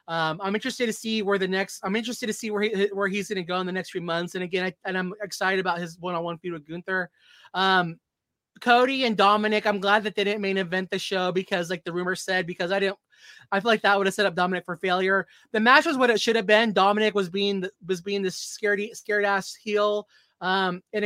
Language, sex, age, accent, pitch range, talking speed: English, male, 20-39, American, 180-210 Hz, 250 wpm